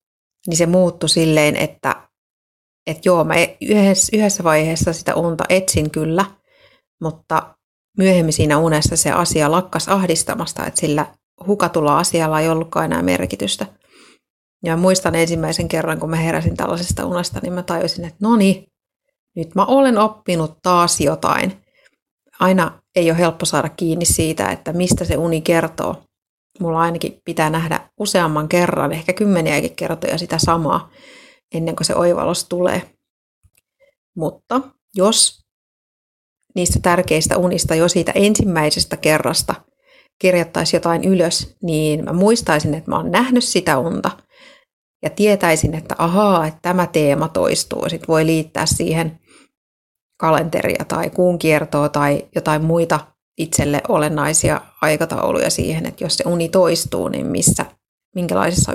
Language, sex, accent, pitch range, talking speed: Finnish, female, native, 160-185 Hz, 135 wpm